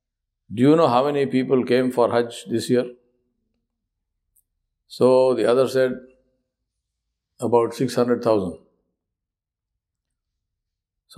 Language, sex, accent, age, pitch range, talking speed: English, male, Indian, 50-69, 105-125 Hz, 105 wpm